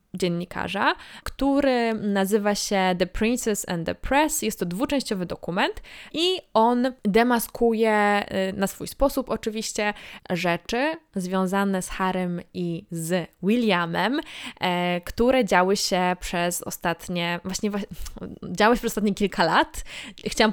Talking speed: 115 wpm